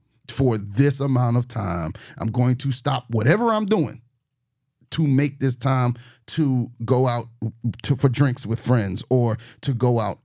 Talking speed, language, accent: 165 wpm, English, American